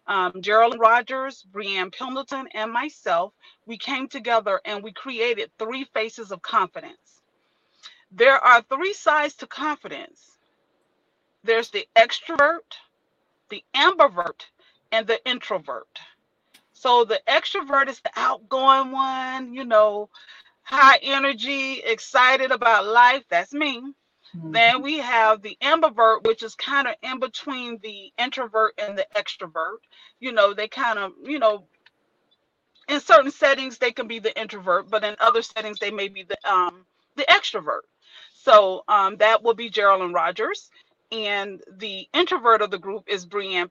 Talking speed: 145 wpm